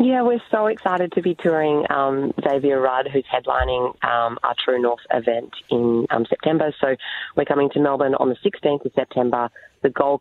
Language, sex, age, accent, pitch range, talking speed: English, female, 20-39, Australian, 120-140 Hz, 190 wpm